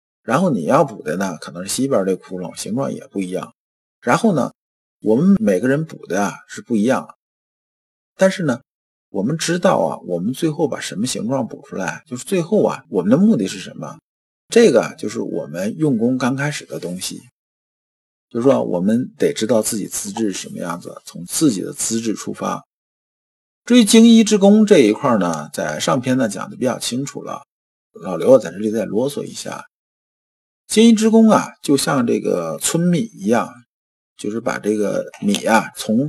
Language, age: Chinese, 50-69